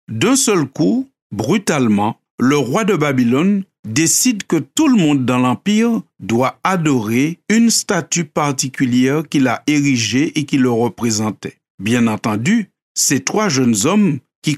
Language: French